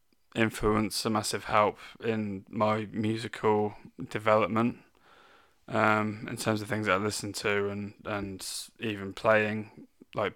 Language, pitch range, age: English, 100-110 Hz, 20-39